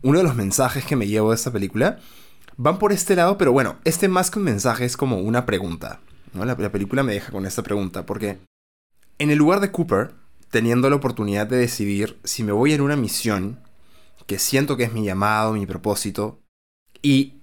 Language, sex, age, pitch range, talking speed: Spanish, male, 20-39, 105-140 Hz, 205 wpm